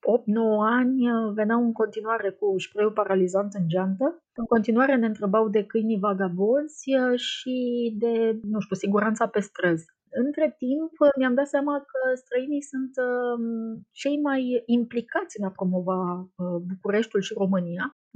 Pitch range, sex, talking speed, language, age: 195-245 Hz, female, 135 wpm, Romanian, 30-49